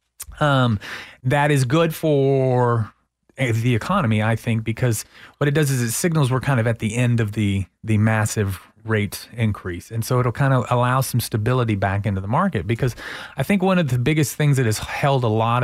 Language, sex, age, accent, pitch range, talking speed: English, male, 30-49, American, 110-145 Hz, 205 wpm